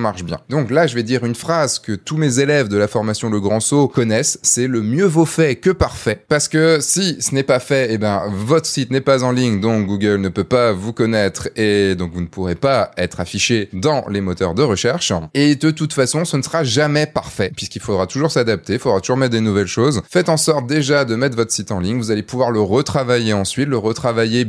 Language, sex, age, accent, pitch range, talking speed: French, male, 20-39, French, 100-135 Hz, 245 wpm